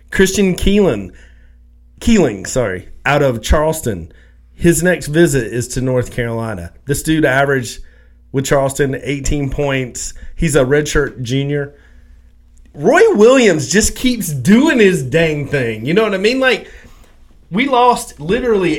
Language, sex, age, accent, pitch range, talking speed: English, male, 30-49, American, 125-185 Hz, 135 wpm